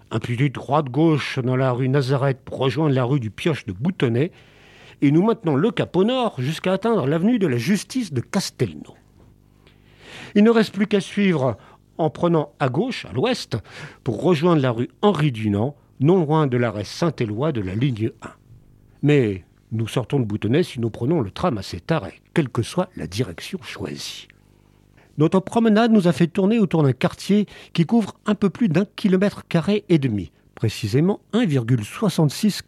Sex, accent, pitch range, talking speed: male, French, 125-175 Hz, 180 wpm